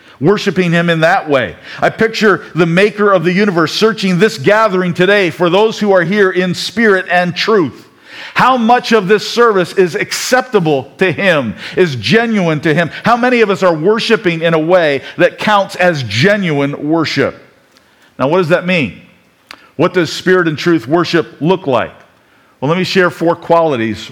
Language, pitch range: English, 165-205 Hz